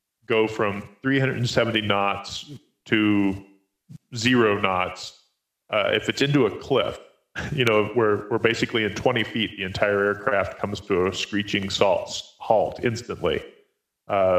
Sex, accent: male, American